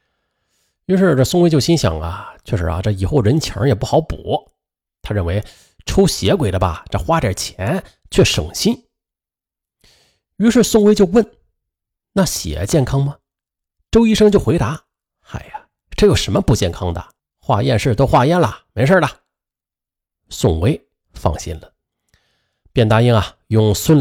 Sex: male